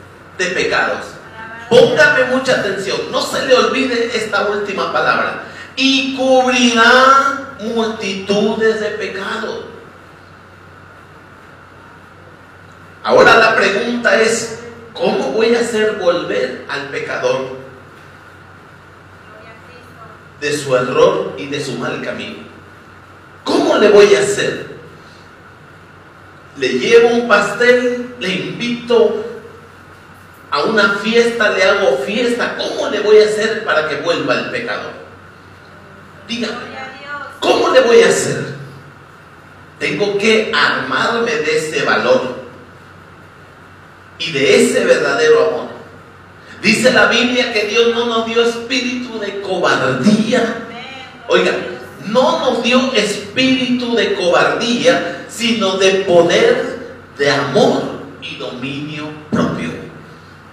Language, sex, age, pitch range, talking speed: Spanish, male, 40-59, 175-250 Hz, 105 wpm